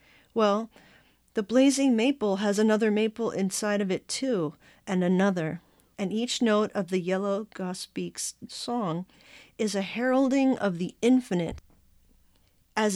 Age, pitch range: 50-69, 165-215 Hz